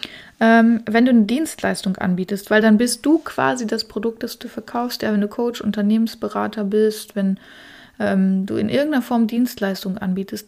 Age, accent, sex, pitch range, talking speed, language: 30-49, German, female, 200-230 Hz, 165 wpm, German